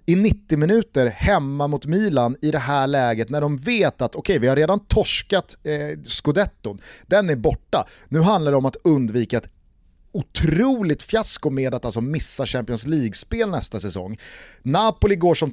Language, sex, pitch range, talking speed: Swedish, male, 120-165 Hz, 175 wpm